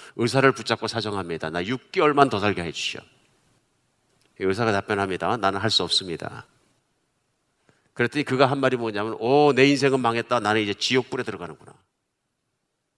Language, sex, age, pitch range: Korean, male, 50-69, 105-140 Hz